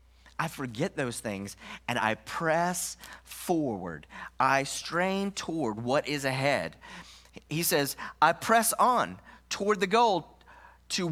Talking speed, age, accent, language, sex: 125 wpm, 30-49, American, English, male